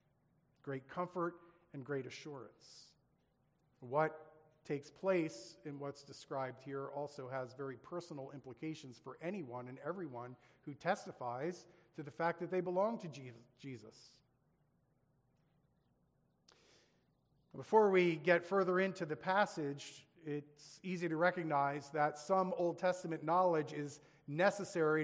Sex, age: male, 40-59